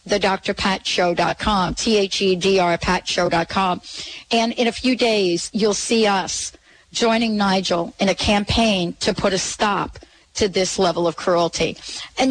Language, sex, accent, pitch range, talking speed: English, female, American, 180-220 Hz, 145 wpm